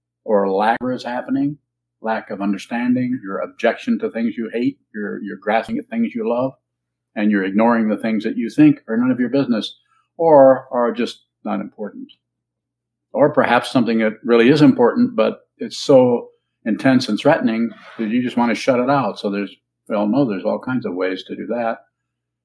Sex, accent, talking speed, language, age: male, American, 190 wpm, English, 50-69